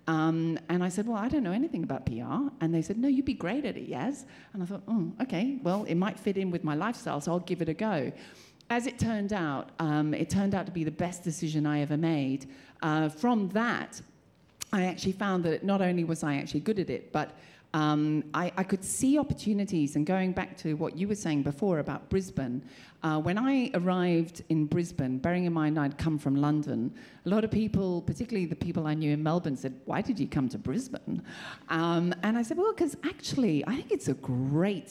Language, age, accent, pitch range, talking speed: English, 40-59, British, 155-205 Hz, 225 wpm